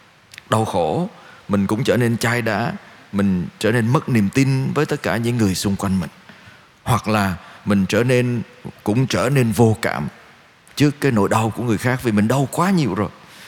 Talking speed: 200 wpm